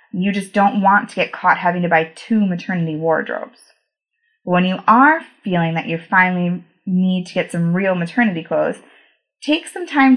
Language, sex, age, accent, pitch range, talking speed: English, female, 20-39, American, 170-220 Hz, 175 wpm